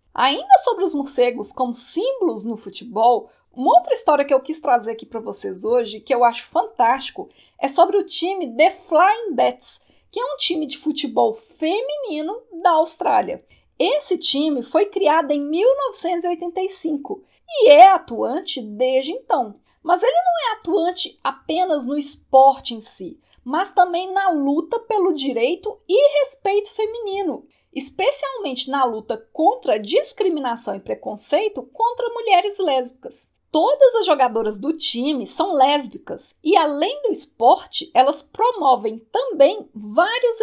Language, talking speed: Portuguese, 140 wpm